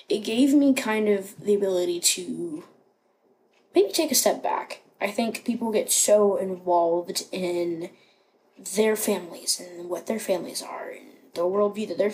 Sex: female